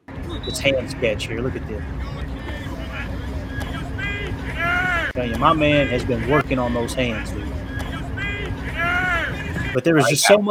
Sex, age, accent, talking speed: male, 20-39, American, 125 wpm